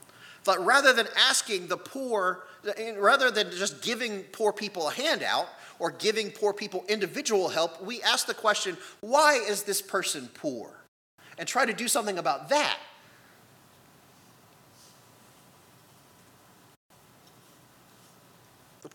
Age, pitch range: 30-49, 165-250 Hz